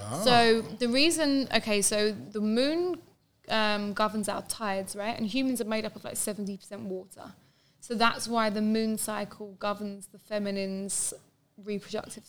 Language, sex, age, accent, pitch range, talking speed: English, female, 20-39, British, 200-235 Hz, 150 wpm